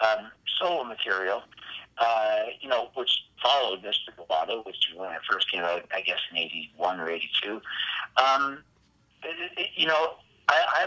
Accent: American